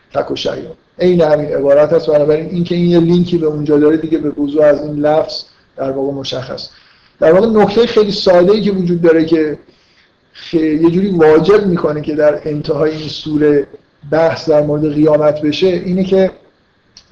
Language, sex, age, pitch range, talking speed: Persian, male, 50-69, 150-180 Hz, 165 wpm